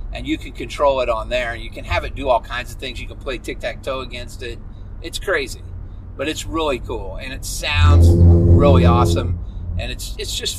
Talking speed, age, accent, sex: 225 wpm, 40-59, American, male